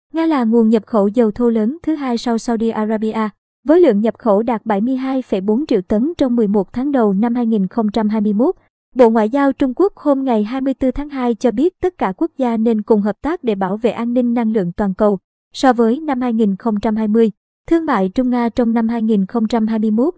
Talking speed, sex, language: 200 wpm, male, Vietnamese